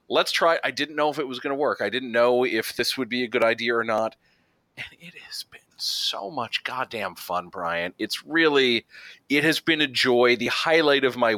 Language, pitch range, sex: English, 105-130 Hz, male